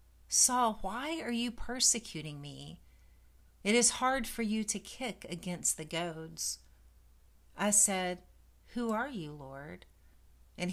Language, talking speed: English, 130 wpm